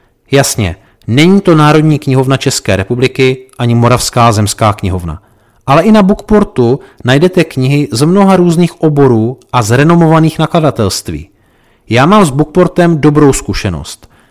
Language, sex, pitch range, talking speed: Czech, male, 115-155 Hz, 125 wpm